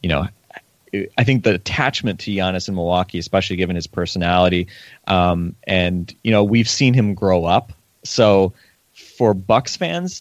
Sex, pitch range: male, 90-120 Hz